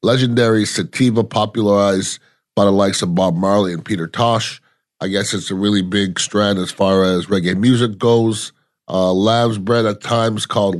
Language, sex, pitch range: English, male, 100-115 Hz